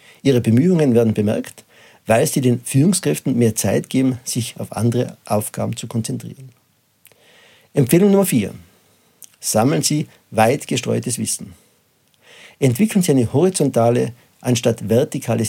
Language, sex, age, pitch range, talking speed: German, male, 50-69, 115-145 Hz, 120 wpm